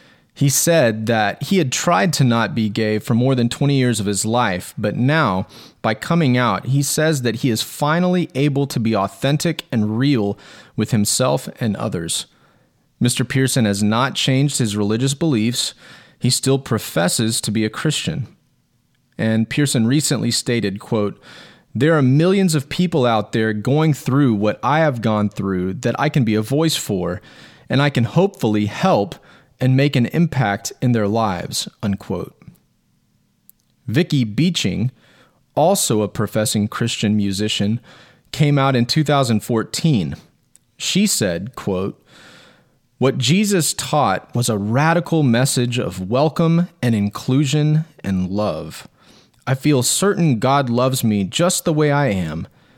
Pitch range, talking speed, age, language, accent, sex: 110-150 Hz, 150 wpm, 30-49, English, American, male